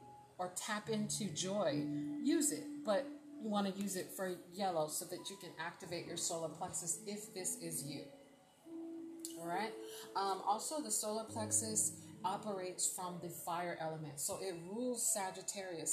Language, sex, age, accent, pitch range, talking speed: English, female, 30-49, American, 160-205 Hz, 160 wpm